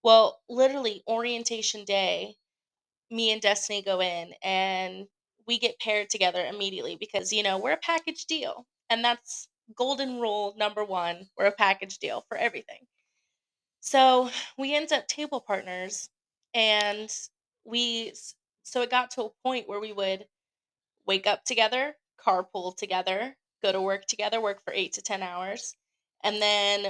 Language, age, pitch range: English, 20-39, 200-245 Hz